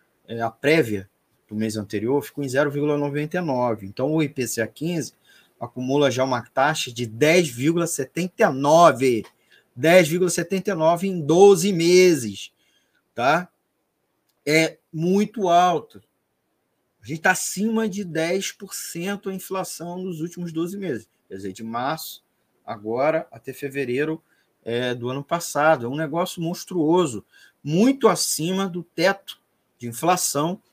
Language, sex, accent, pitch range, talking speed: Portuguese, male, Brazilian, 115-165 Hz, 115 wpm